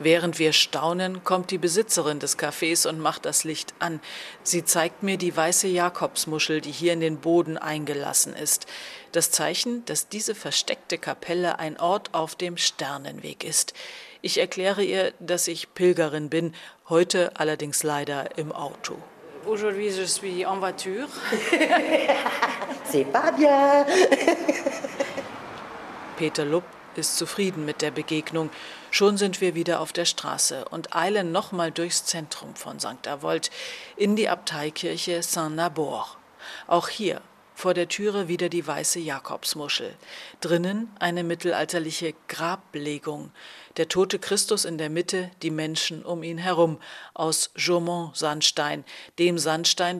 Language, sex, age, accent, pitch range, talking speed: German, female, 40-59, German, 160-195 Hz, 125 wpm